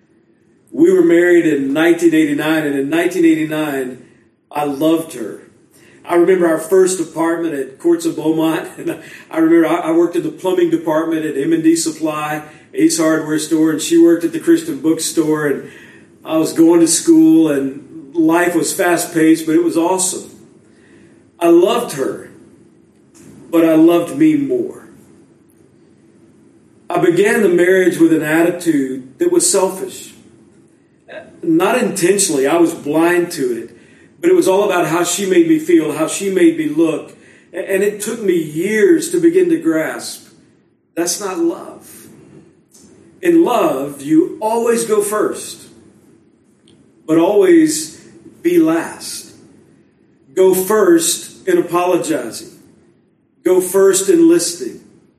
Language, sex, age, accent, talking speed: English, male, 50-69, American, 135 wpm